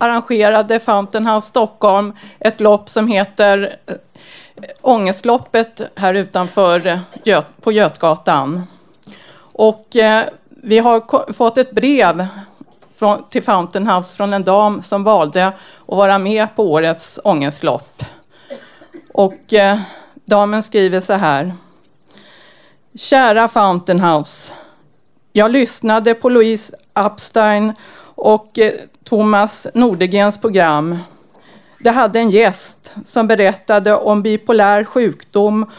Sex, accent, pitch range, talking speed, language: female, native, 195-235 Hz, 100 wpm, Swedish